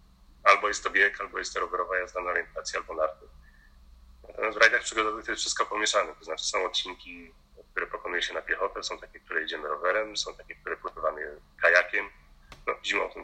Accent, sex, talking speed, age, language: native, male, 195 wpm, 30-49, Polish